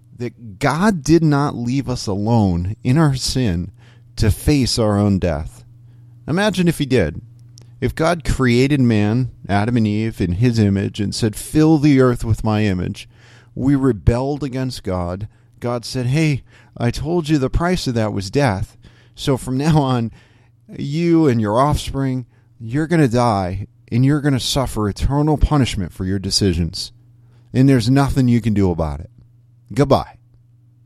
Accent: American